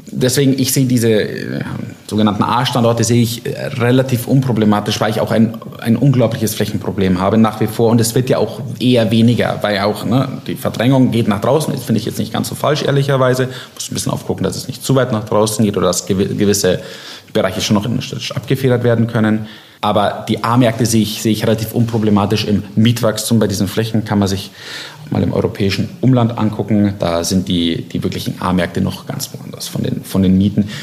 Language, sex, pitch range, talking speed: German, male, 100-120 Hz, 205 wpm